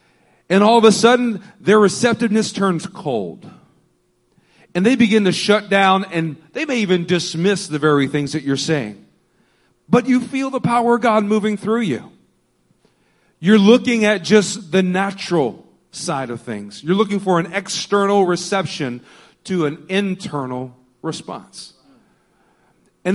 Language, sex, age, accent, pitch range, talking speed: English, male, 40-59, American, 160-215 Hz, 145 wpm